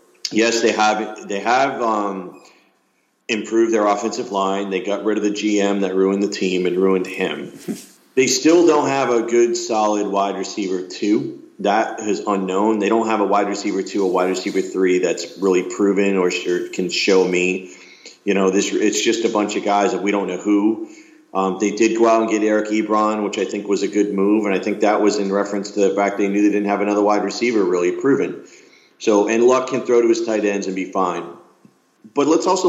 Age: 40-59